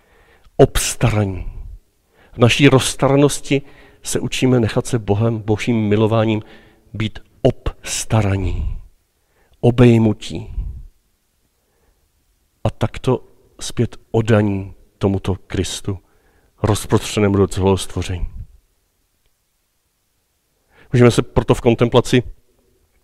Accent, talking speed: native, 75 wpm